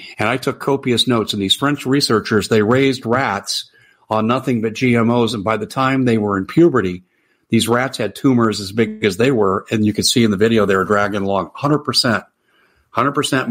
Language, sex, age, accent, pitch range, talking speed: English, male, 50-69, American, 110-135 Hz, 205 wpm